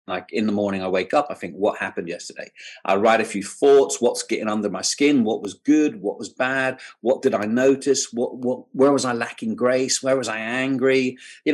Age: 30-49